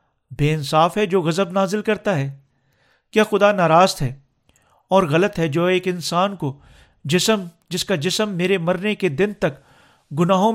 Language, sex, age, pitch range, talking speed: Urdu, male, 50-69, 150-200 Hz, 165 wpm